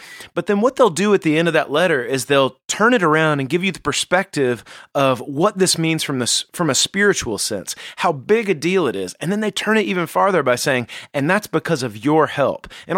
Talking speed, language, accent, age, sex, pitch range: 245 wpm, English, American, 30-49, male, 130-180 Hz